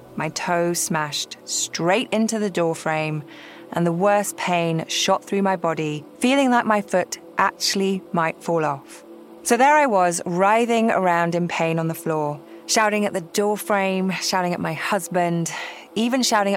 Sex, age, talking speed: female, 20-39, 160 wpm